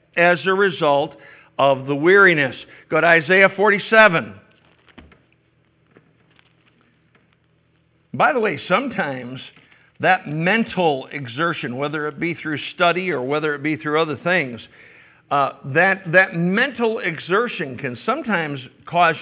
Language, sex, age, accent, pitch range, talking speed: English, male, 60-79, American, 135-175 Hz, 115 wpm